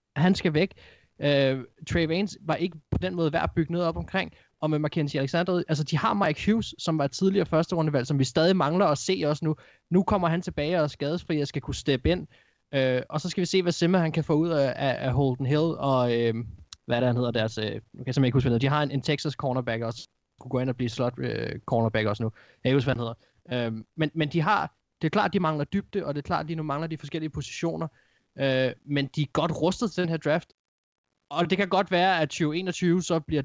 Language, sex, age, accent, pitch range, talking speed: Danish, male, 20-39, native, 130-165 Hz, 255 wpm